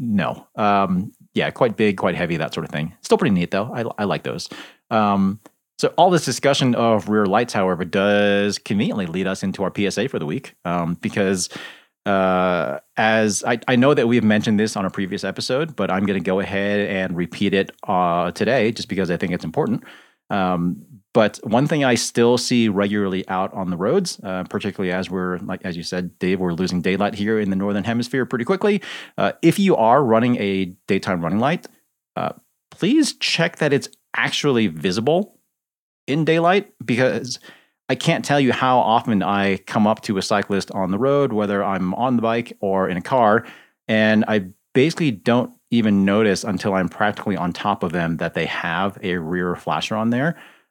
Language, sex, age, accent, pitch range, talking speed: English, male, 30-49, American, 95-120 Hz, 195 wpm